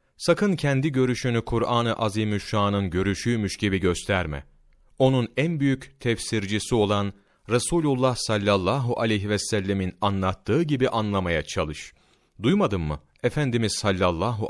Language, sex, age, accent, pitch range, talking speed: Turkish, male, 40-59, native, 95-130 Hz, 110 wpm